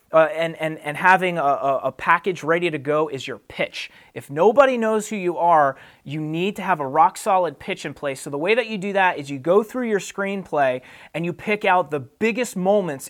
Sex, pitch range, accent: male, 155-200 Hz, American